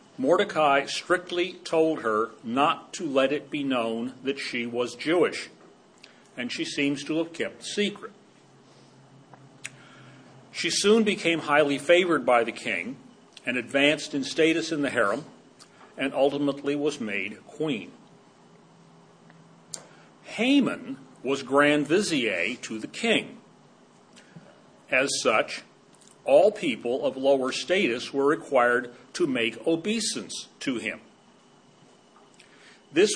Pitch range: 130-180 Hz